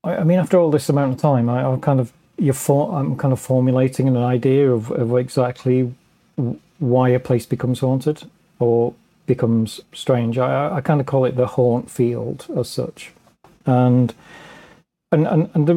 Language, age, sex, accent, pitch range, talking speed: English, 40-59, male, British, 120-150 Hz, 180 wpm